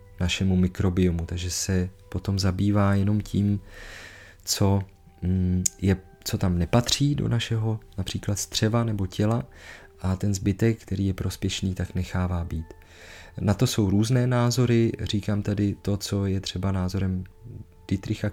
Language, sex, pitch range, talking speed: Czech, male, 90-105 Hz, 135 wpm